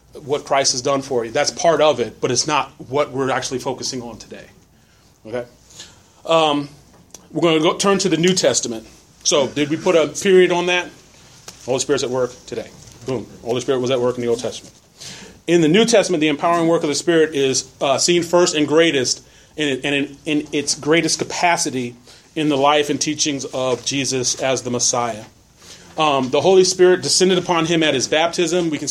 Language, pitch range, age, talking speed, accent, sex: English, 130-165 Hz, 30-49, 205 wpm, American, male